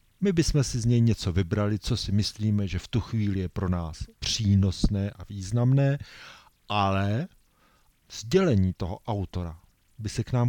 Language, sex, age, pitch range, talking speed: Czech, male, 40-59, 90-115 Hz, 160 wpm